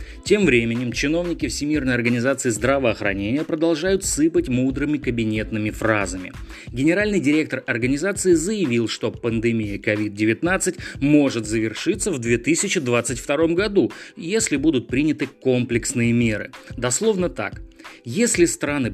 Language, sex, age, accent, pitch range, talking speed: Russian, male, 30-49, native, 115-160 Hz, 100 wpm